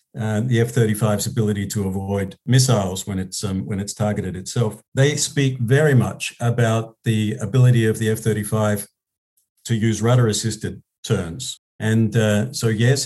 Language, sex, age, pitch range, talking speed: English, male, 50-69, 105-120 Hz, 145 wpm